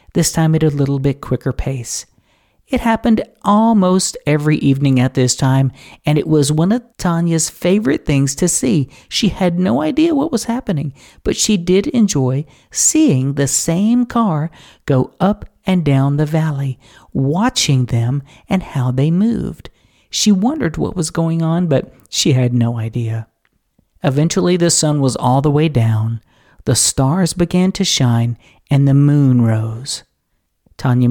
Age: 50-69